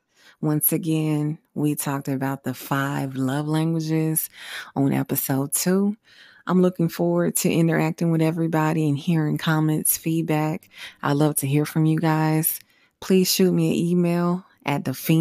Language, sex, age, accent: English, female, 20-39, American